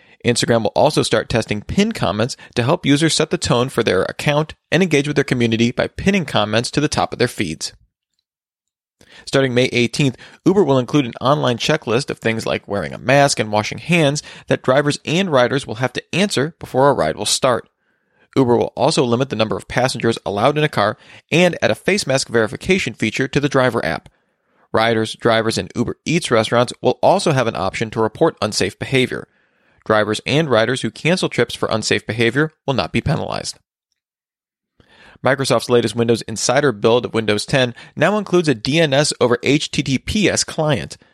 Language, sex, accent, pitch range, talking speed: English, male, American, 115-150 Hz, 185 wpm